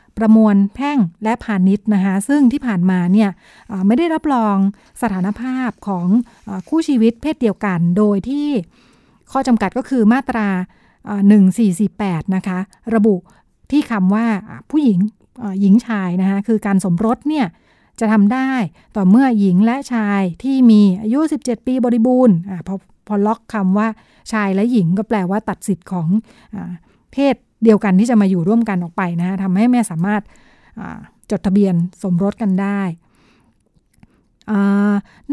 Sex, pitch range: female, 195-245 Hz